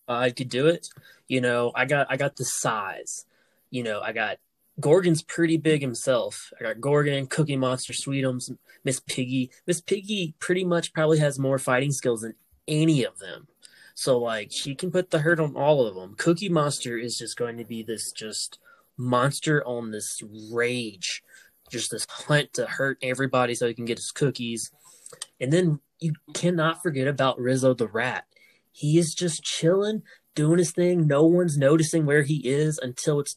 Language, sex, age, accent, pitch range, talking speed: English, male, 20-39, American, 125-160 Hz, 180 wpm